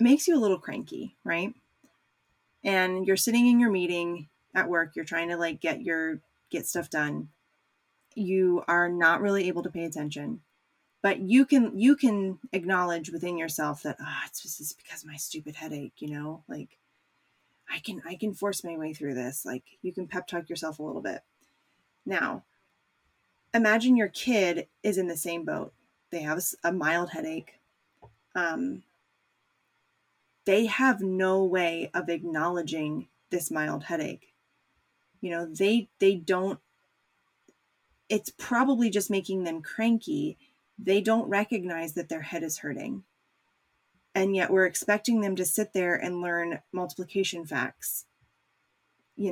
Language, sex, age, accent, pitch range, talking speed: English, female, 20-39, American, 170-210 Hz, 150 wpm